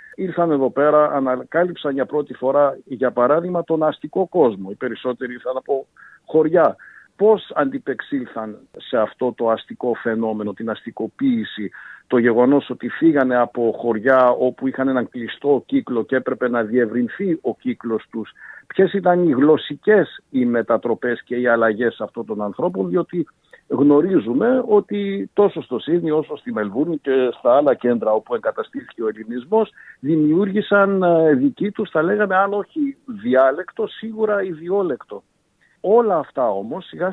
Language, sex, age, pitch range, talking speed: Greek, male, 50-69, 120-185 Hz, 140 wpm